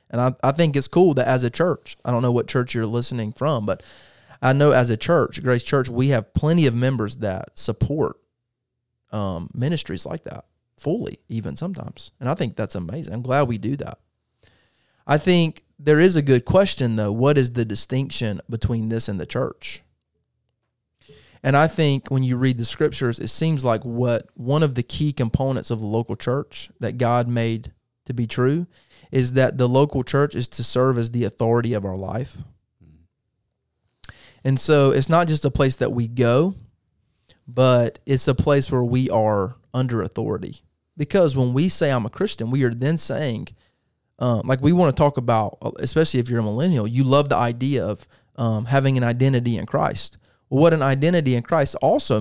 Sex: male